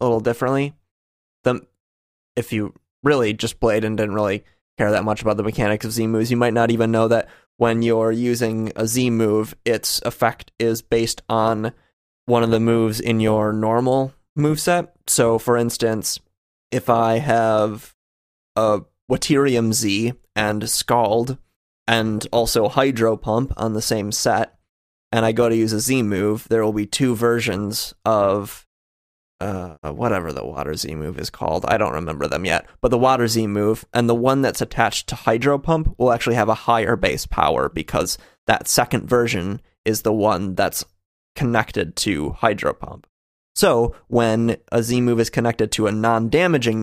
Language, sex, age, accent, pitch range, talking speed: English, male, 20-39, American, 105-120 Hz, 175 wpm